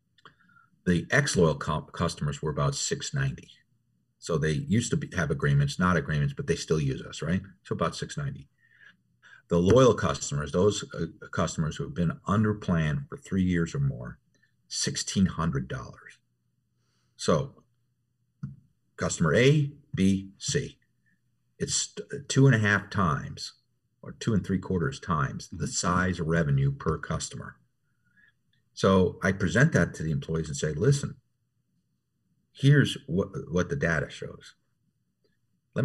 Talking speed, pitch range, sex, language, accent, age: 135 wpm, 95-140 Hz, male, English, American, 50-69